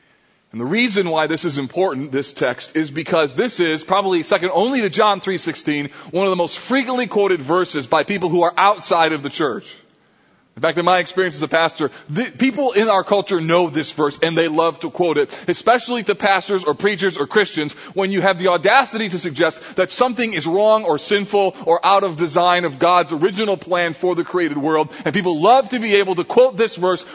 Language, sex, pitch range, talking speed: English, male, 170-215 Hz, 215 wpm